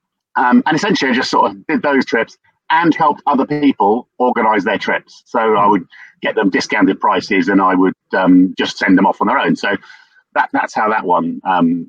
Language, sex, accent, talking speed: English, male, British, 210 wpm